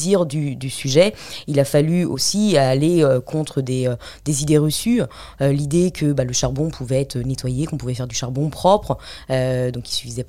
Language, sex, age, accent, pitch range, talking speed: French, female, 20-39, French, 130-155 Hz, 200 wpm